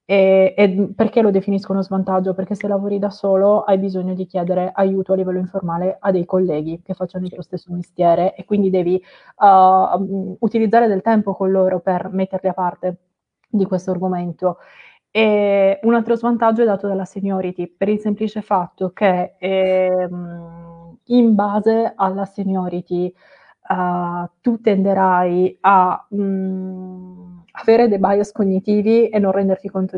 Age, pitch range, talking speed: 20-39, 185-205 Hz, 150 wpm